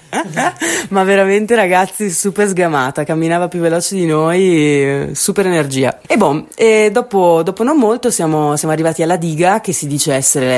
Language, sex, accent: Italian, female, native